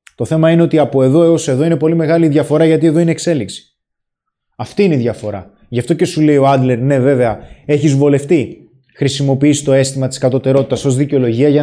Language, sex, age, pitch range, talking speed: Greek, male, 20-39, 135-170 Hz, 200 wpm